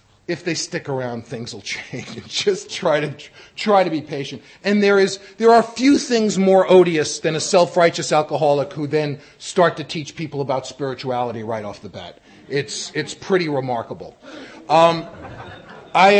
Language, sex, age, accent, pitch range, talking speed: English, male, 40-59, American, 140-180 Hz, 165 wpm